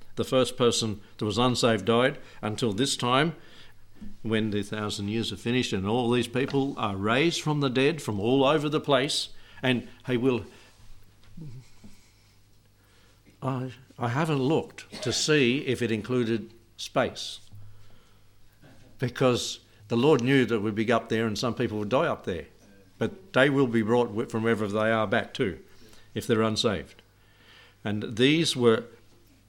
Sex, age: male, 60-79